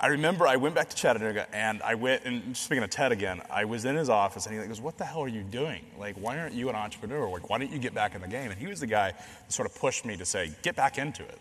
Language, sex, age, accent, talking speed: English, male, 30-49, American, 315 wpm